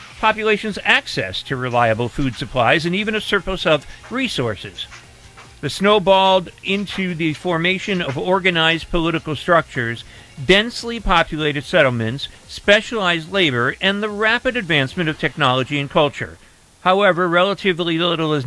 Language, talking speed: English, 125 wpm